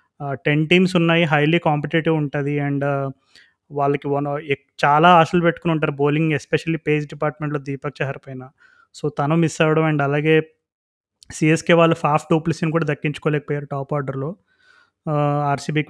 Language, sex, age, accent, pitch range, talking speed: Telugu, male, 20-39, native, 145-165 Hz, 130 wpm